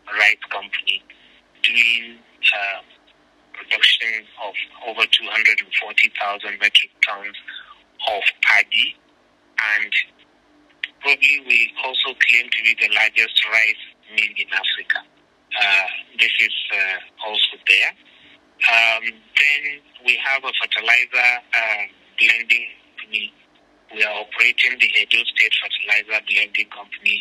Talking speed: 110 wpm